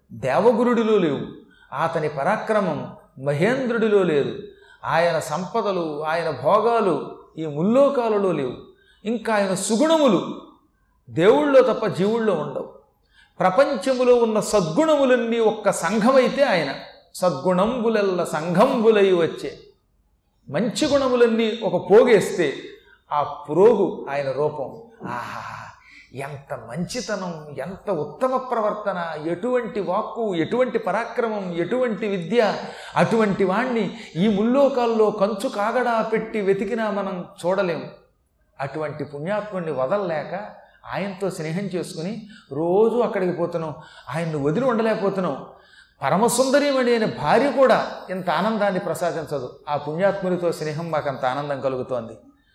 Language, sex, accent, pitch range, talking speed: Telugu, male, native, 165-240 Hz, 95 wpm